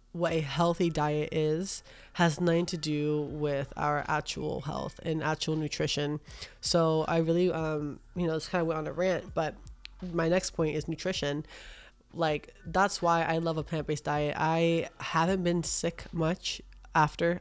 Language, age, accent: English, 20-39, American